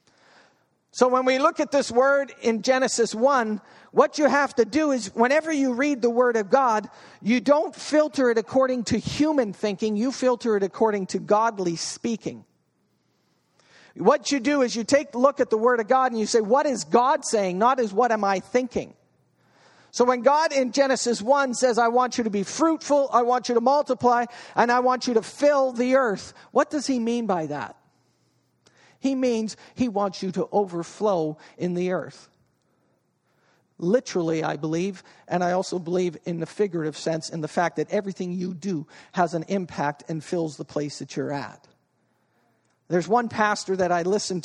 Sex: male